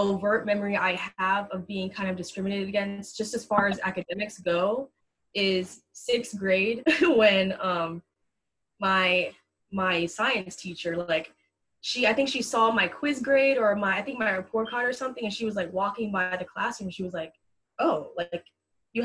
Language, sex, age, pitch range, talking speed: English, female, 10-29, 185-220 Hz, 185 wpm